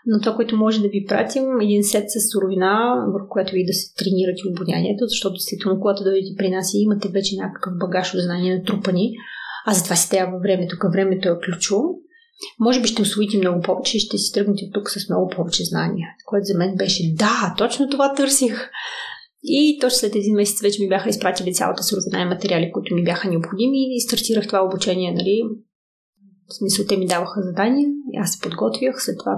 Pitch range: 185-220 Hz